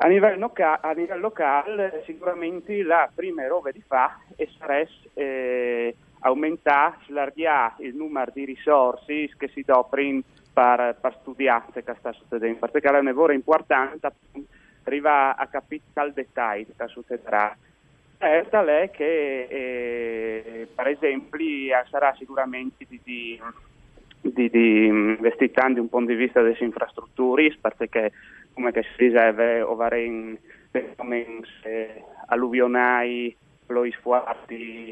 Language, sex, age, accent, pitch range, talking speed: Italian, male, 30-49, native, 115-140 Hz, 115 wpm